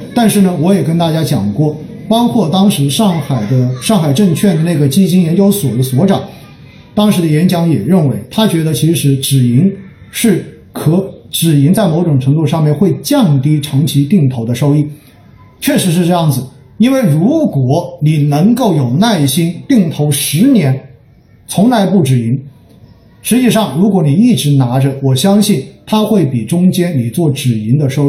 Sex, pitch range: male, 135-195 Hz